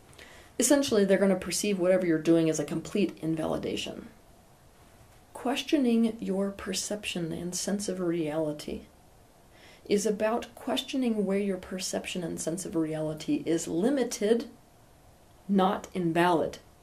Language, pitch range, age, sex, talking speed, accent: English, 160-205 Hz, 30-49, female, 120 wpm, American